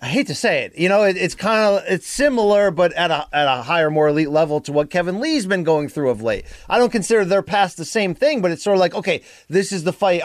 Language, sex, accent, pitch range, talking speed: English, male, American, 150-200 Hz, 285 wpm